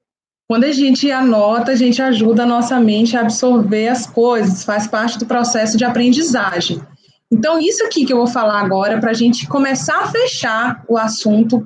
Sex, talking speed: female, 185 wpm